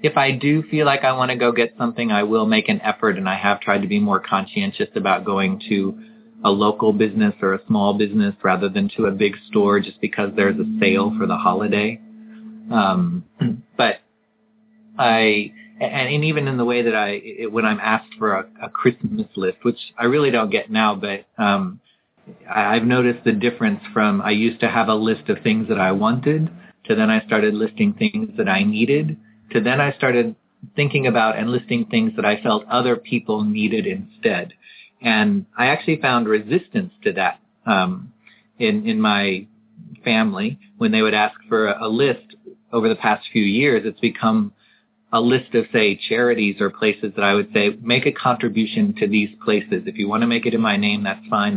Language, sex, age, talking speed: English, male, 30-49, 195 wpm